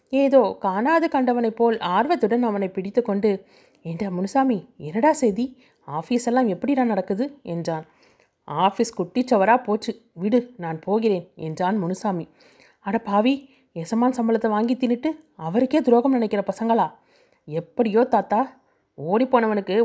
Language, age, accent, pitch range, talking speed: Tamil, 30-49, native, 190-245 Hz, 115 wpm